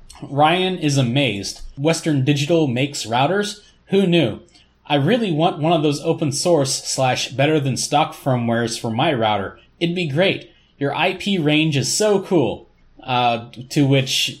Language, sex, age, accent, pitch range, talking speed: English, male, 20-39, American, 125-160 Hz, 155 wpm